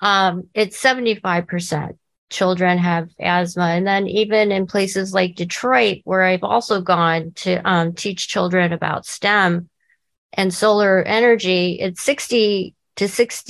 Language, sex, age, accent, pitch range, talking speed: English, female, 40-59, American, 180-215 Hz, 130 wpm